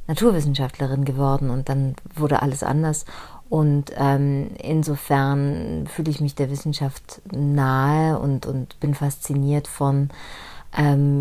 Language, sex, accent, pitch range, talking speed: German, female, German, 135-150 Hz, 120 wpm